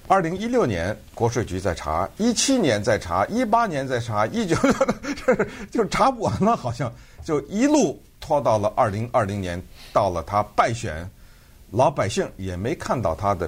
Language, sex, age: Chinese, male, 50-69